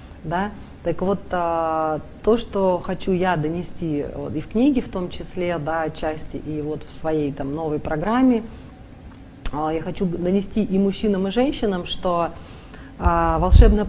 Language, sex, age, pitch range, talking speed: Russian, female, 30-49, 155-195 Hz, 120 wpm